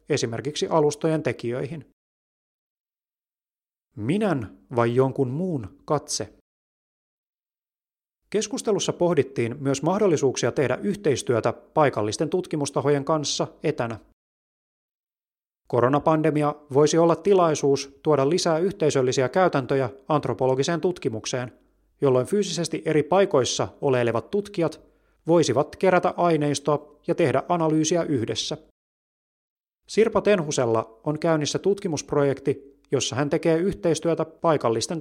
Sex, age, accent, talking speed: male, 30-49, native, 85 wpm